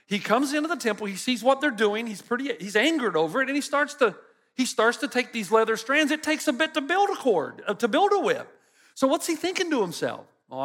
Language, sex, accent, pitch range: English, male, American, 175-275 Hz